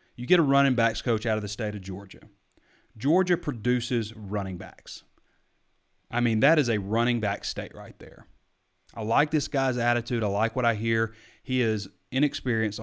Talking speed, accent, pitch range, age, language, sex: 180 wpm, American, 100-125 Hz, 30-49, English, male